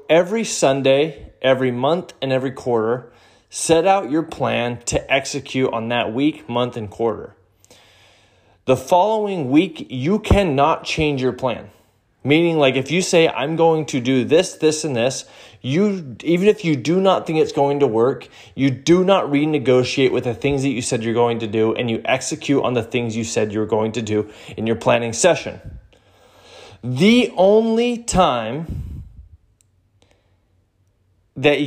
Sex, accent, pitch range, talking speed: male, American, 115-160 Hz, 165 wpm